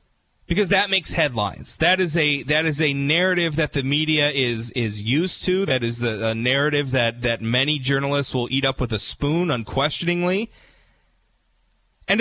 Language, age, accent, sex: English, 30-49, American, male